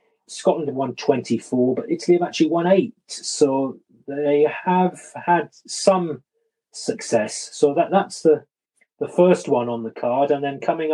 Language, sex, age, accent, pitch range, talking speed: English, male, 30-49, British, 120-165 Hz, 160 wpm